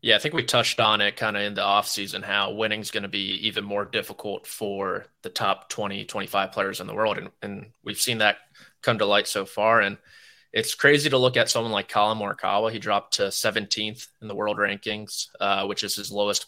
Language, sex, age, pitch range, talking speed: English, male, 20-39, 105-120 Hz, 225 wpm